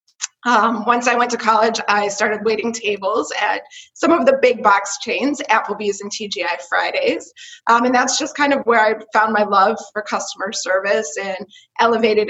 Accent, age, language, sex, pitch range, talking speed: American, 20-39, English, female, 200-235 Hz, 180 wpm